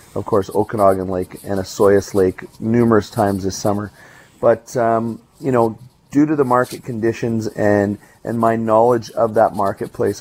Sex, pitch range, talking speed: male, 105-120 Hz, 160 wpm